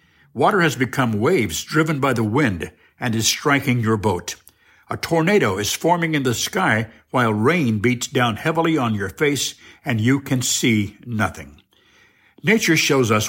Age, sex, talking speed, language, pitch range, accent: 60-79, male, 165 wpm, English, 110-150 Hz, American